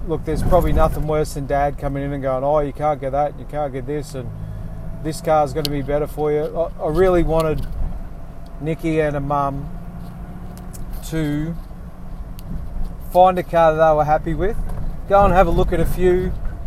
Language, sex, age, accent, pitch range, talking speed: English, male, 30-49, Australian, 135-160 Hz, 190 wpm